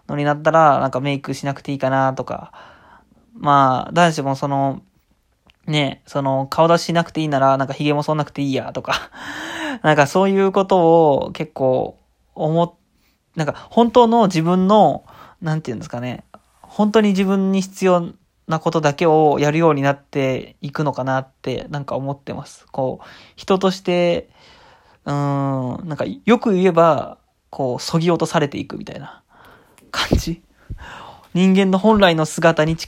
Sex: male